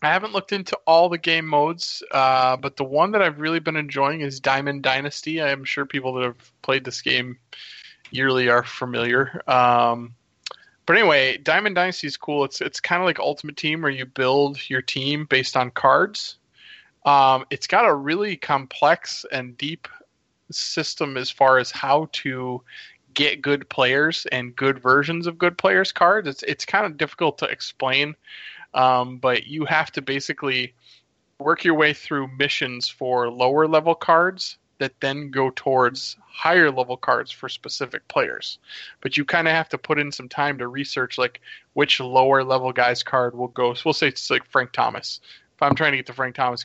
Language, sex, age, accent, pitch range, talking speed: English, male, 20-39, American, 125-150 Hz, 185 wpm